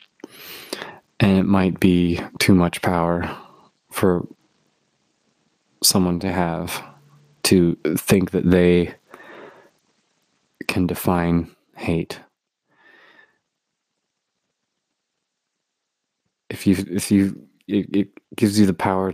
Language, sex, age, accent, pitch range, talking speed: English, male, 30-49, American, 90-95 Hz, 90 wpm